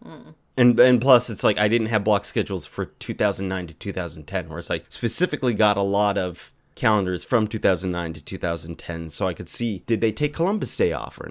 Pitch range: 90-120 Hz